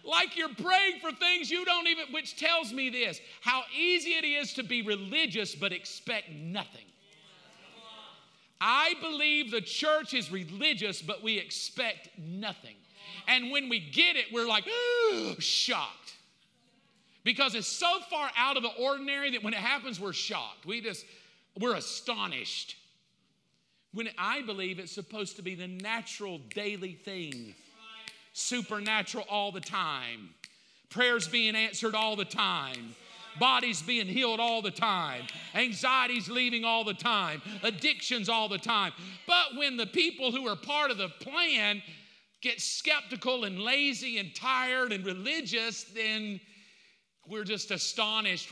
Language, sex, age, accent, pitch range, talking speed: English, male, 50-69, American, 190-255 Hz, 145 wpm